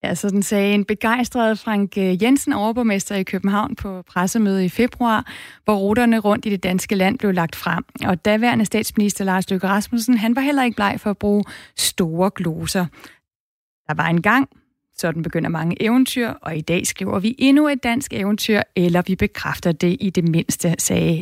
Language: Danish